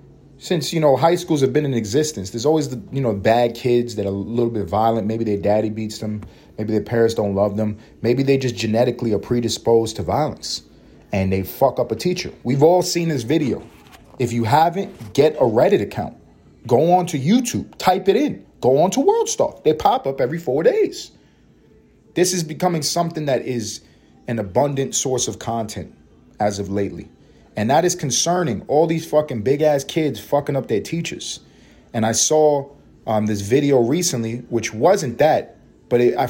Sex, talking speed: male, 190 wpm